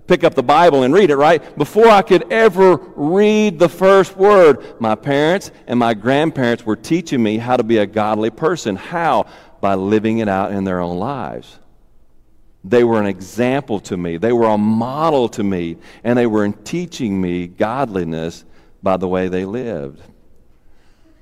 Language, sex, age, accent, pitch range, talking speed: English, male, 50-69, American, 115-175 Hz, 175 wpm